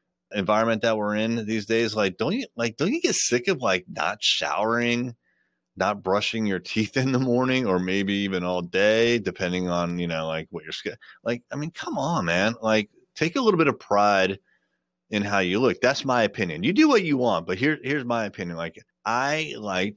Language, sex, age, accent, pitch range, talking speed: English, male, 30-49, American, 90-120 Hz, 215 wpm